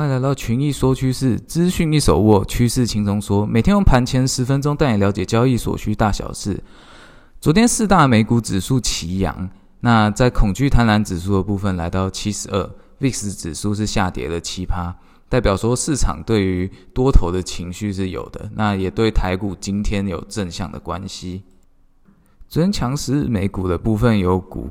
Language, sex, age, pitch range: Chinese, male, 20-39, 95-115 Hz